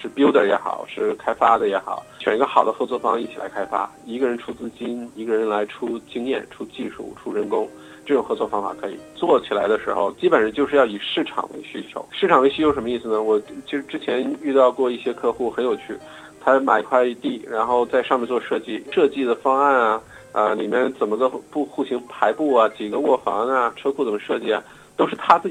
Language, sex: Chinese, male